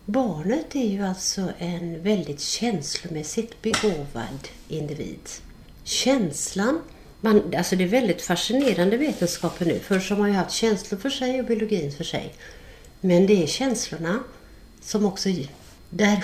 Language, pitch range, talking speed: Swedish, 175-225 Hz, 135 wpm